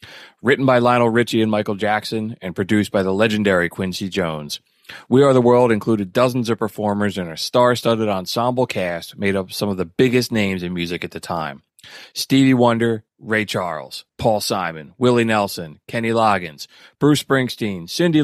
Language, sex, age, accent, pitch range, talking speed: English, male, 30-49, American, 100-125 Hz, 175 wpm